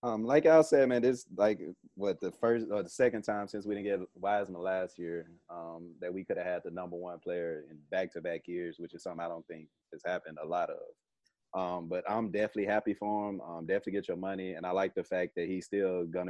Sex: male